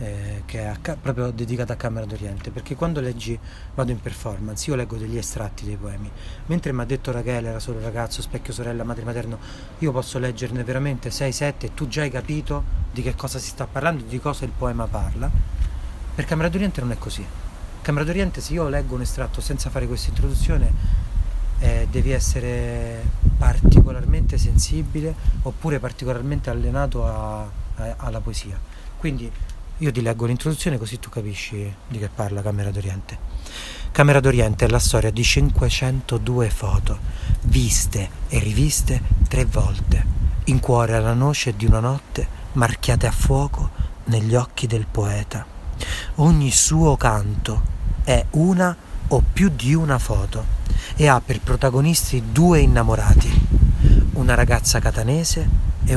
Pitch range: 100-130 Hz